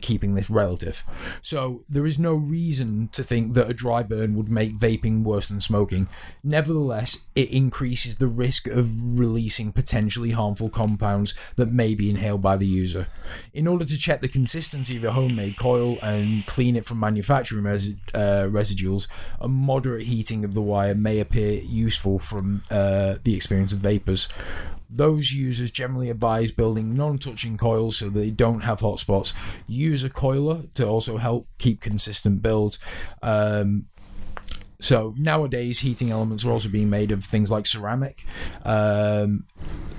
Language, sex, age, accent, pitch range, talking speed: English, male, 20-39, British, 100-120 Hz, 160 wpm